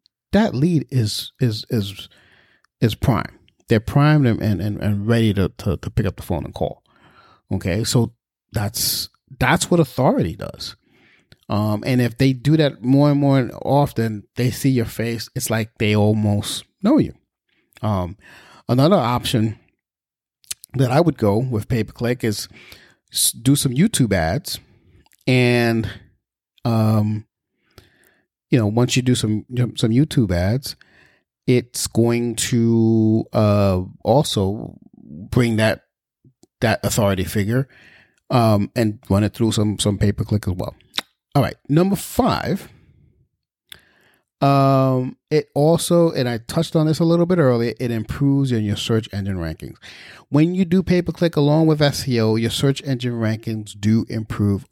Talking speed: 145 wpm